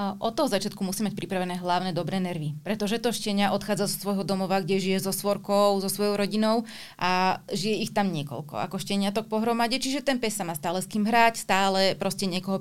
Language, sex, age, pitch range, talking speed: Slovak, female, 30-49, 185-210 Hz, 205 wpm